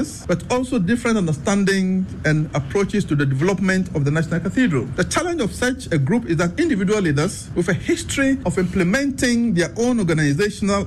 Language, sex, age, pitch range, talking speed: English, male, 50-69, 155-205 Hz, 170 wpm